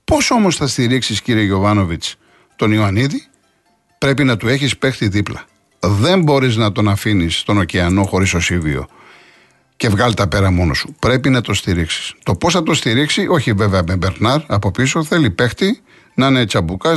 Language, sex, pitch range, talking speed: Greek, male, 105-150 Hz, 175 wpm